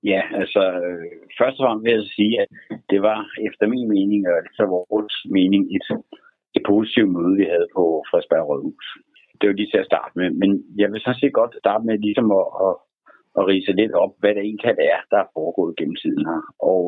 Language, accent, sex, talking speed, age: Danish, native, male, 230 wpm, 60-79